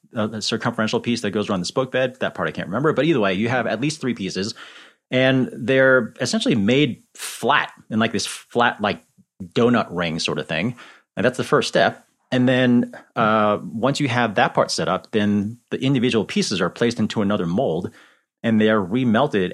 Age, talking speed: 30-49, 205 wpm